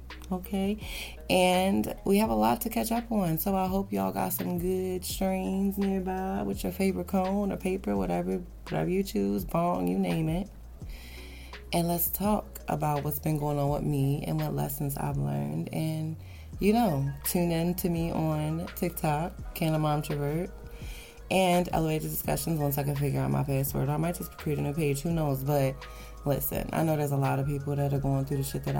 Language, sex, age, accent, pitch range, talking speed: English, female, 20-39, American, 125-180 Hz, 200 wpm